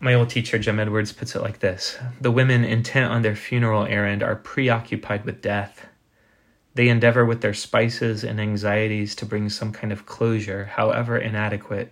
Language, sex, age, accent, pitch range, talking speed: English, male, 20-39, American, 105-120 Hz, 175 wpm